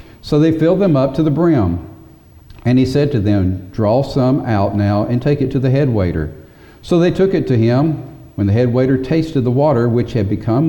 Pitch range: 105-140 Hz